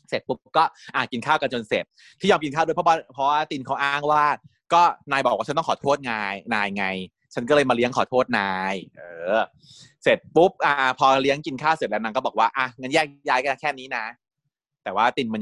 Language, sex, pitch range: Thai, male, 130-160 Hz